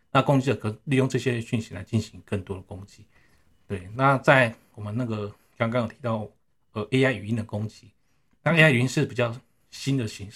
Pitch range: 105-130 Hz